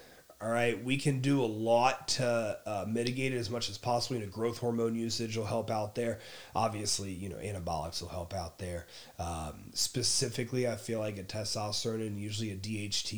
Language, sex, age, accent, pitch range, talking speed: English, male, 30-49, American, 100-120 Hz, 200 wpm